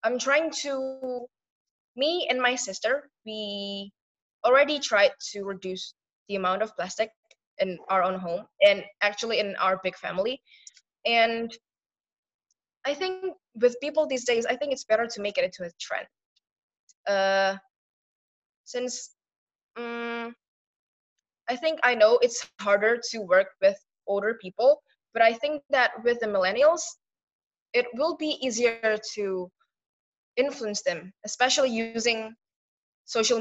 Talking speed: 135 wpm